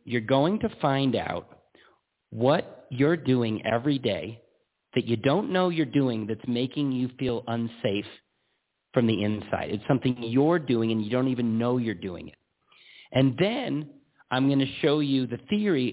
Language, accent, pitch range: English, American, 115-150 Hz